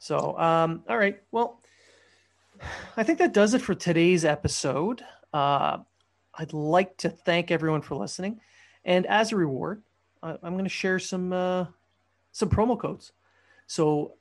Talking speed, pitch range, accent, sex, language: 150 wpm, 145-180 Hz, American, male, English